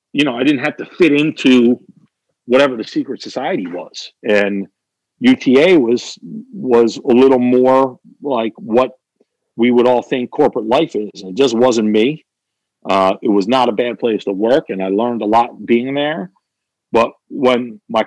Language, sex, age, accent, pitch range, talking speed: English, male, 50-69, American, 110-135 Hz, 175 wpm